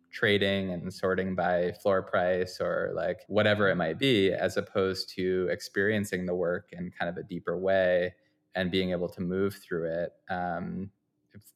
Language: English